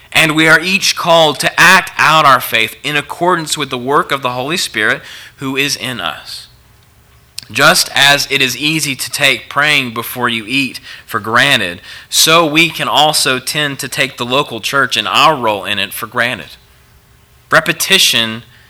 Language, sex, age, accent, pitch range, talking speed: English, male, 30-49, American, 115-150 Hz, 175 wpm